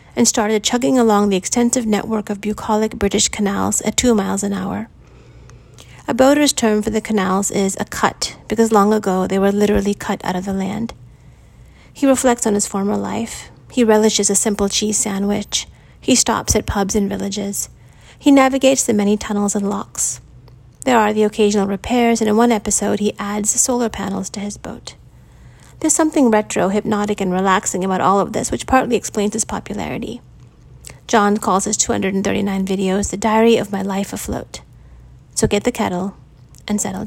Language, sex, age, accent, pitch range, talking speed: English, female, 30-49, American, 200-225 Hz, 180 wpm